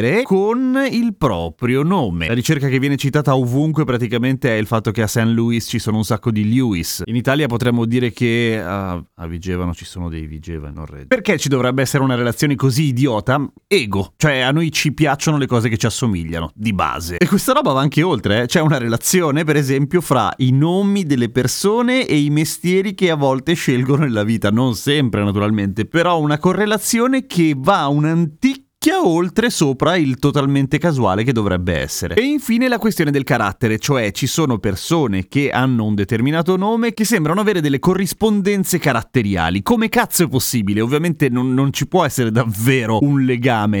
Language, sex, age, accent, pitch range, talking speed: Italian, male, 30-49, native, 110-170 Hz, 190 wpm